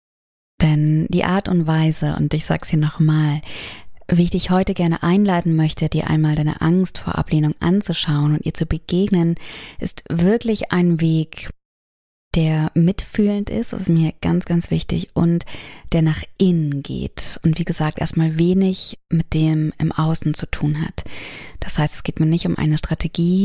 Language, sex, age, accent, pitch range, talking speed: German, female, 20-39, German, 150-170 Hz, 175 wpm